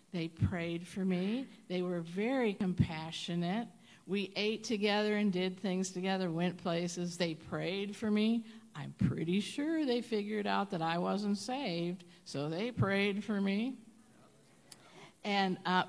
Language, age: English, 50-69